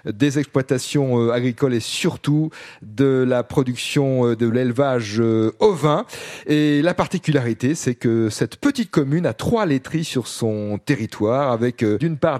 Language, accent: French, French